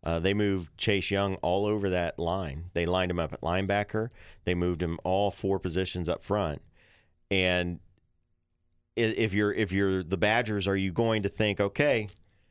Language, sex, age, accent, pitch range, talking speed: English, male, 40-59, American, 90-110 Hz, 175 wpm